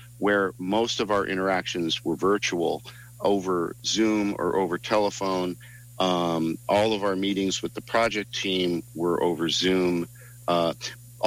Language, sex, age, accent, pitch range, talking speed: English, male, 50-69, American, 90-120 Hz, 135 wpm